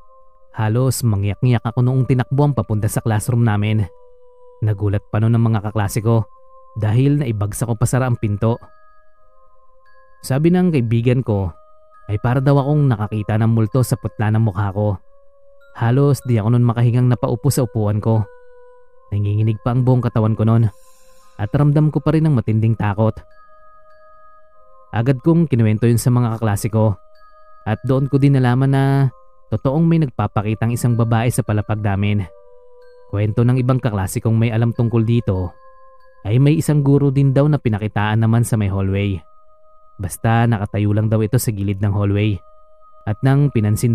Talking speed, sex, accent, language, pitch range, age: 155 wpm, male, native, Filipino, 110-150 Hz, 20-39